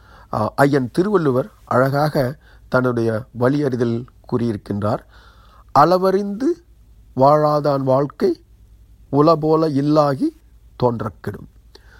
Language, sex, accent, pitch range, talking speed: Tamil, male, native, 110-145 Hz, 60 wpm